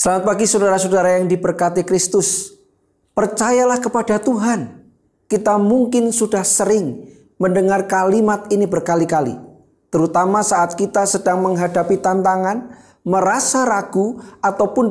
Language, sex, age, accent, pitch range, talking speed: Indonesian, male, 40-59, native, 190-235 Hz, 105 wpm